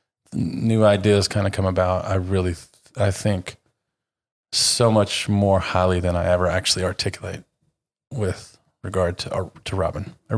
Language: English